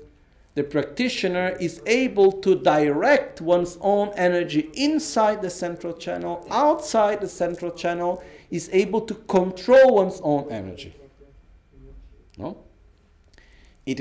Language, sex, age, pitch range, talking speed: Italian, male, 50-69, 135-185 Hz, 110 wpm